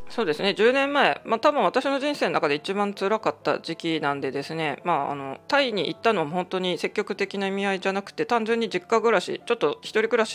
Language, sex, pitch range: Japanese, female, 165-230 Hz